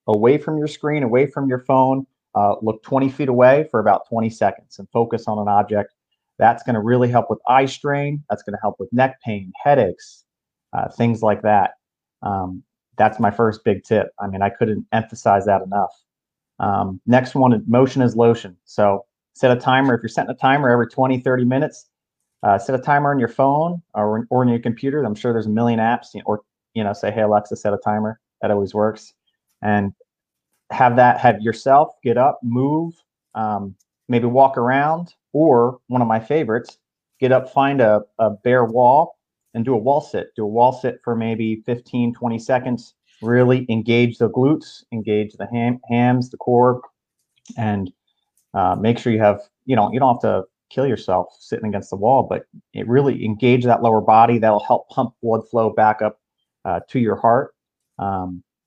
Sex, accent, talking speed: male, American, 195 wpm